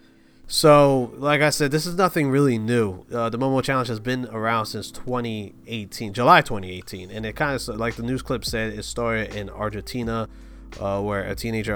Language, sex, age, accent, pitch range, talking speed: English, male, 30-49, American, 100-125 Hz, 190 wpm